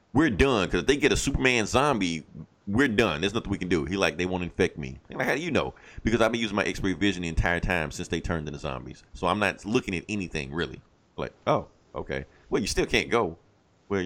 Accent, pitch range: American, 90-115 Hz